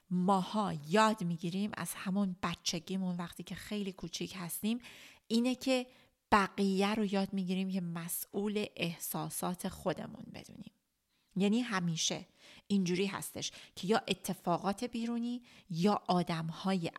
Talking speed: 115 wpm